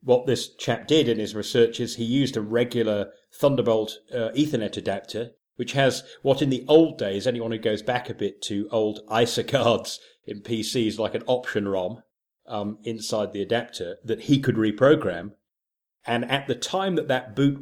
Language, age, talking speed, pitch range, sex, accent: English, 40-59, 185 wpm, 105-125 Hz, male, British